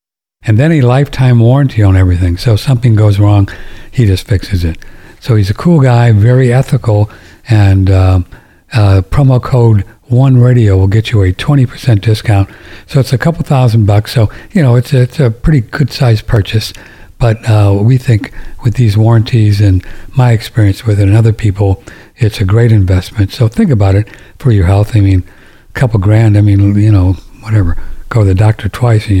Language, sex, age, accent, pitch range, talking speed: English, male, 60-79, American, 105-130 Hz, 190 wpm